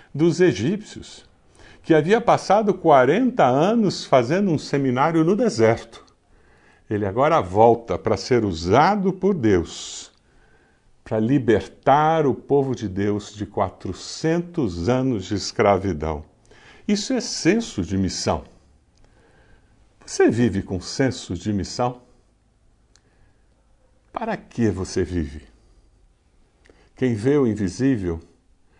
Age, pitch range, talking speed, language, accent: 60-79, 105-155 Hz, 105 wpm, Portuguese, Brazilian